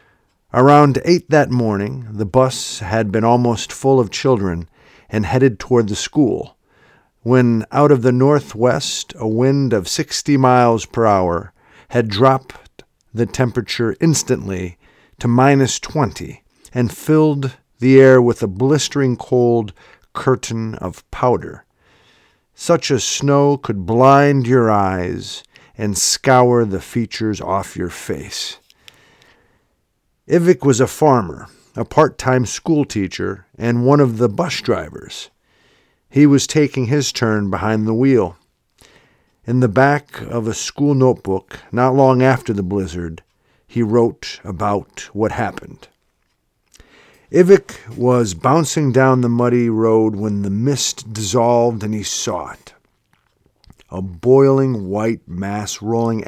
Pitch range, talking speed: 105-135 Hz, 130 wpm